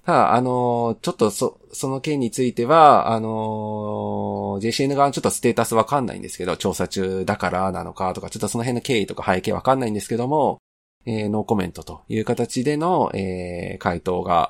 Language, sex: Japanese, male